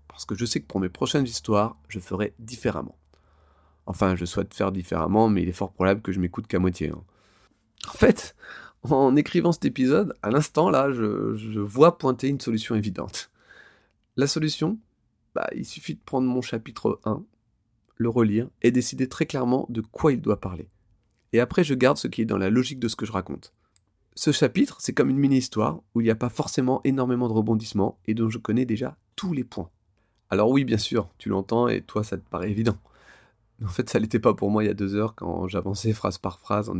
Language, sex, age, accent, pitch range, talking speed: French, male, 30-49, French, 95-120 Hz, 220 wpm